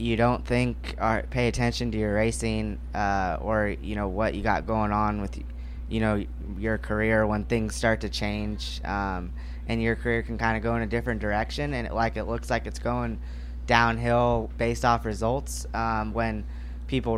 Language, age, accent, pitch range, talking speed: English, 20-39, American, 95-115 Hz, 190 wpm